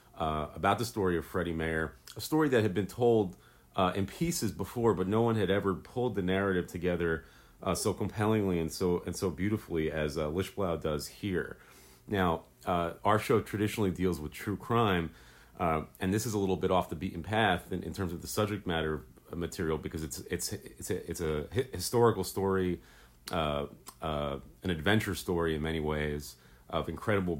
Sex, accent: male, American